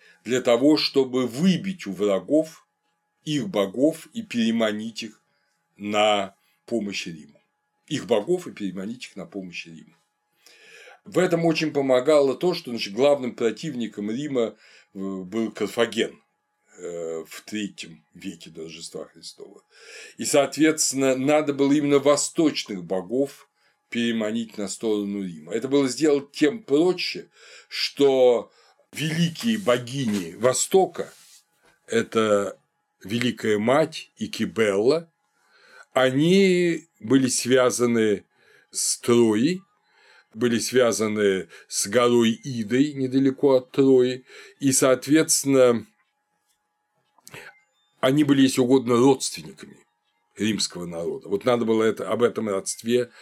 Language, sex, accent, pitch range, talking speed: Russian, male, native, 110-150 Hz, 105 wpm